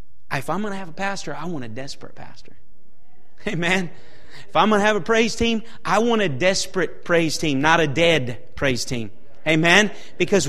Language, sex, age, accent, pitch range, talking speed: English, male, 30-49, American, 195-255 Hz, 195 wpm